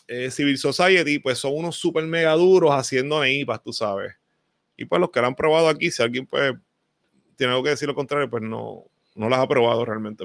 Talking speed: 215 wpm